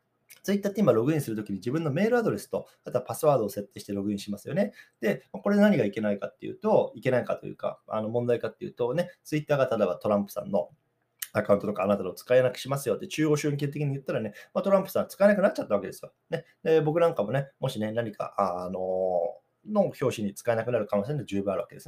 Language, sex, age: Japanese, male, 20-39